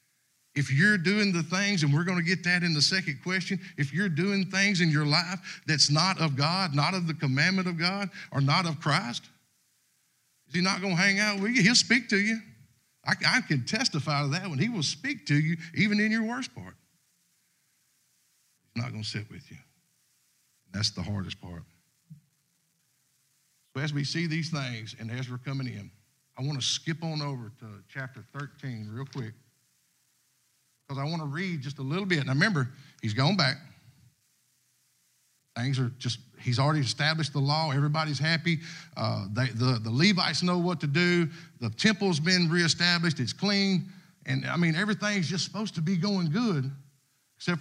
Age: 50-69